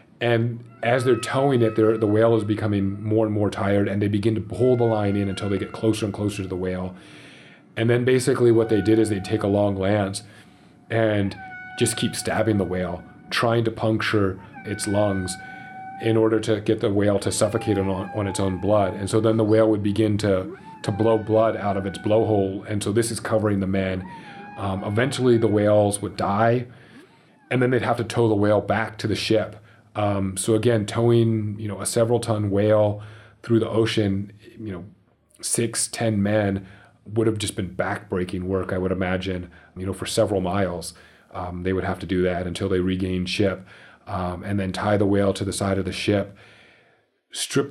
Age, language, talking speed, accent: 30-49, English, 205 wpm, American